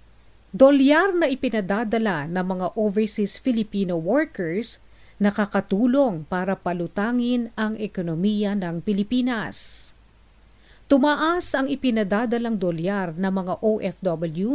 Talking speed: 95 wpm